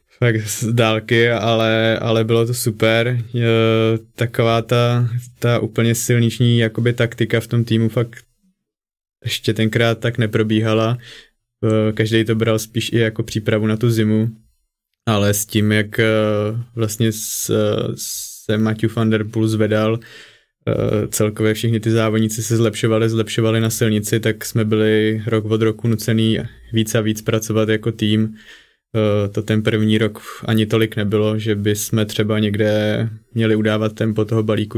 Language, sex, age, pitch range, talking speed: Czech, male, 20-39, 110-115 Hz, 145 wpm